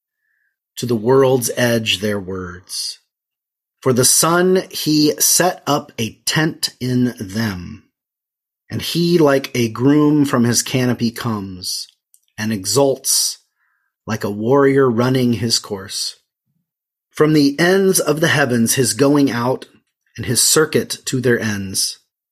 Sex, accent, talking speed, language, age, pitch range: male, American, 130 wpm, English, 30-49, 110-140 Hz